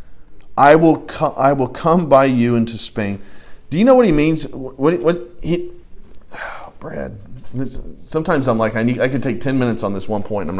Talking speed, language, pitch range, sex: 215 wpm, English, 115-170 Hz, male